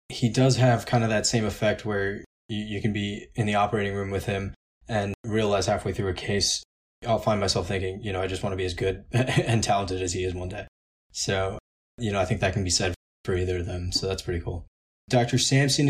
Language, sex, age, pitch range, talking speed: English, male, 20-39, 95-115 Hz, 240 wpm